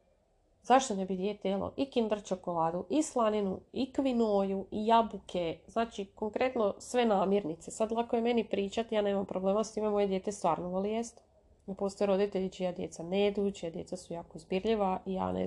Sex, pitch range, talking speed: female, 180-215 Hz, 180 wpm